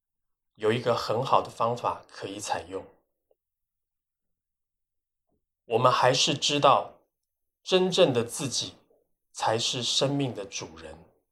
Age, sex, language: 20-39, male, Chinese